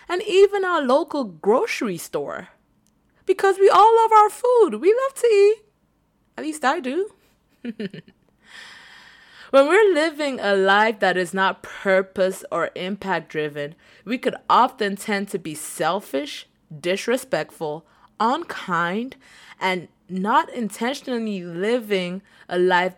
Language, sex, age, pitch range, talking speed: English, female, 20-39, 170-250 Hz, 125 wpm